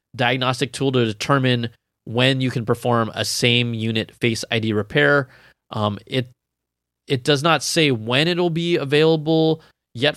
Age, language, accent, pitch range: 20-39, English, American, 120-150 Hz